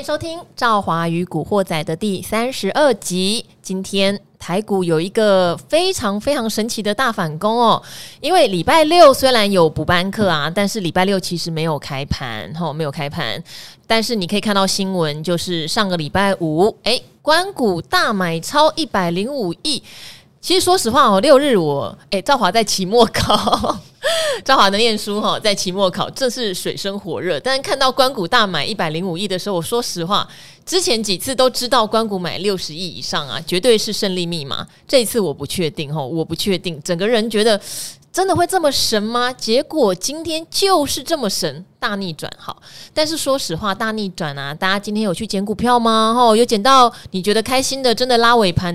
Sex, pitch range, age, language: female, 170-230 Hz, 20-39, Chinese